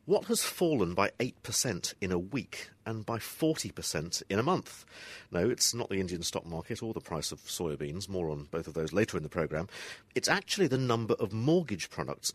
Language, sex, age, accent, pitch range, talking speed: English, male, 50-69, British, 85-140 Hz, 215 wpm